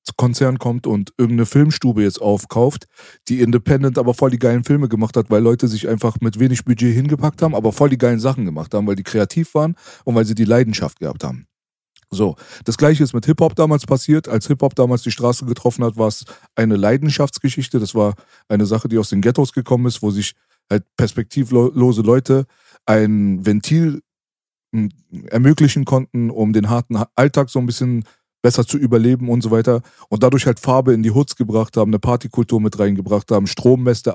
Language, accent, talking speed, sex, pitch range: German, German, 190 wpm, male, 110-130 Hz